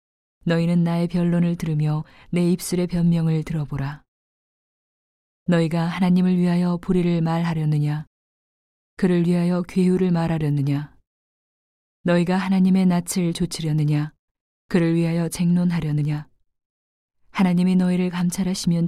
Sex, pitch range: female, 155-180 Hz